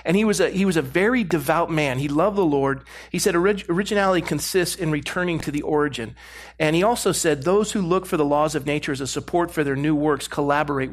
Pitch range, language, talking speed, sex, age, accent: 145-185 Hz, English, 235 wpm, male, 40-59, American